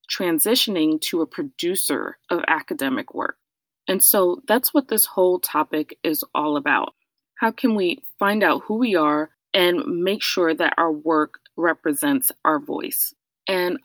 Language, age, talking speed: English, 20-39, 150 wpm